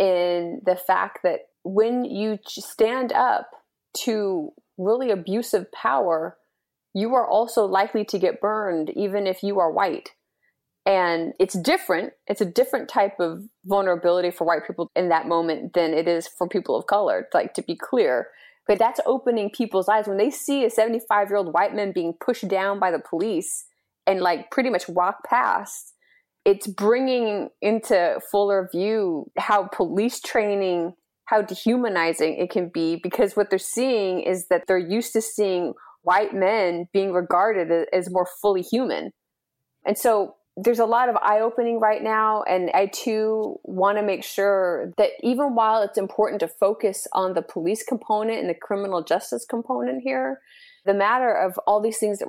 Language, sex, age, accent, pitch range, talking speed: English, female, 30-49, American, 180-225 Hz, 170 wpm